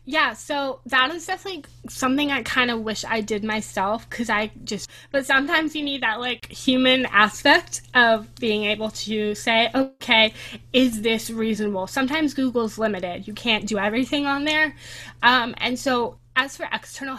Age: 20-39